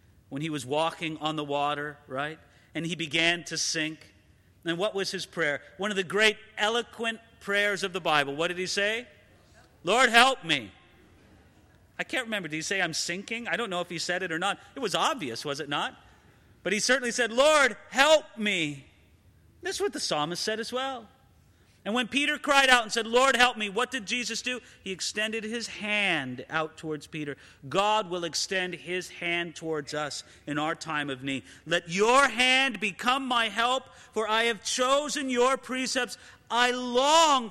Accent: American